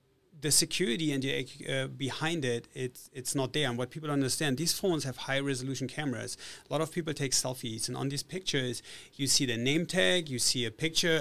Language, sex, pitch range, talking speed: English, male, 130-150 Hz, 210 wpm